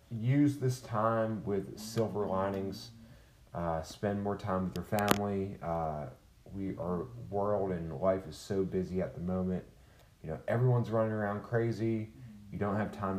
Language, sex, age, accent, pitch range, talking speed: English, male, 30-49, American, 95-120 Hz, 160 wpm